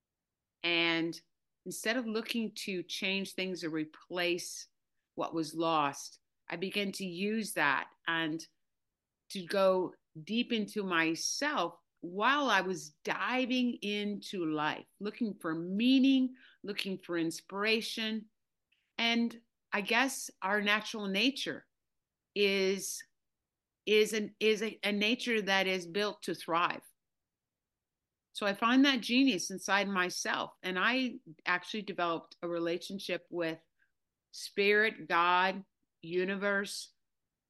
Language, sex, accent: English, female, American